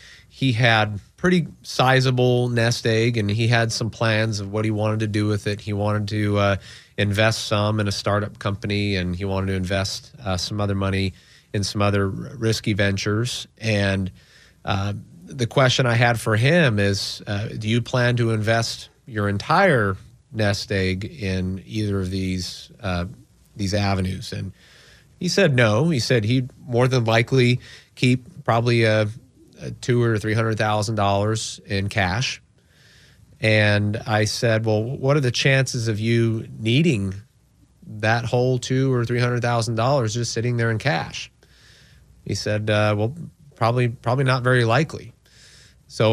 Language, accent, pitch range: English, American, 105-125 Hz